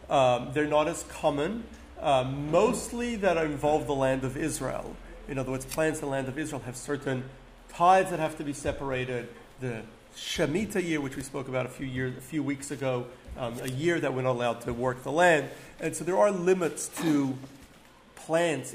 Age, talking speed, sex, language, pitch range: 40-59, 200 wpm, male, English, 135-175 Hz